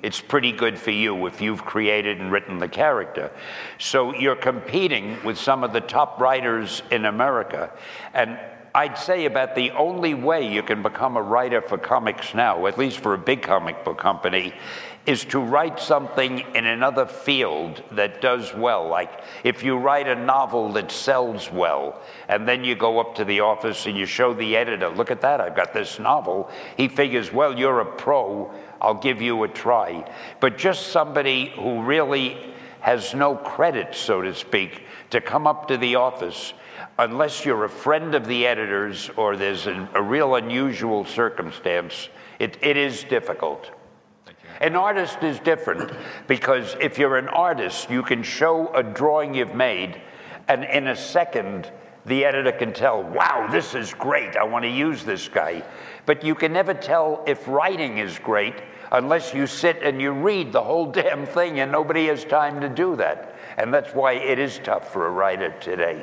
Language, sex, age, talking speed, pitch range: English, male, 60-79, 180 wpm, 115-150 Hz